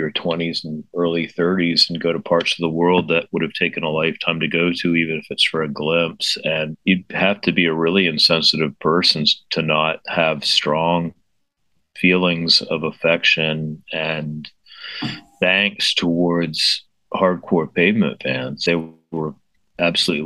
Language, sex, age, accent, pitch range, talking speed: English, male, 40-59, American, 80-90 Hz, 150 wpm